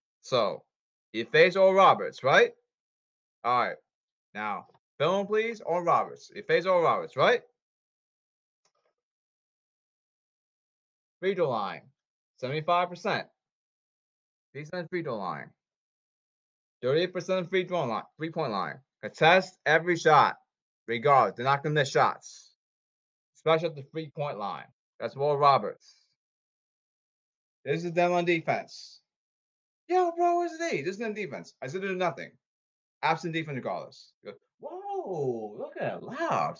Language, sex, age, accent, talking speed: English, male, 20-39, American, 125 wpm